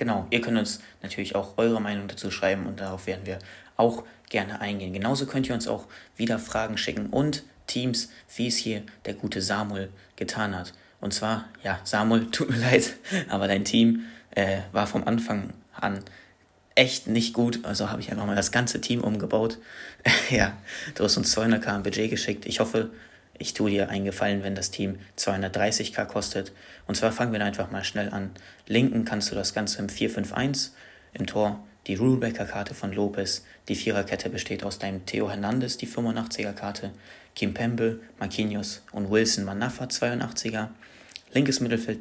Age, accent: 30-49, German